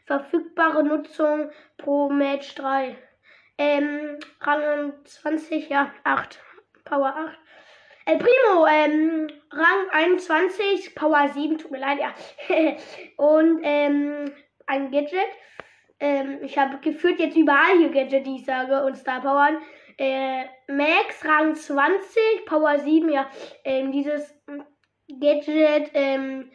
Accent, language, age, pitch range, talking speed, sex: German, German, 20-39, 275-310 Hz, 115 wpm, female